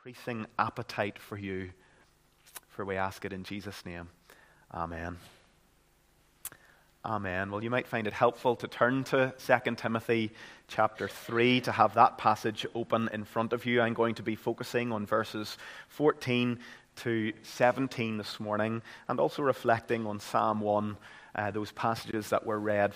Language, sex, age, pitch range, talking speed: English, male, 30-49, 110-150 Hz, 155 wpm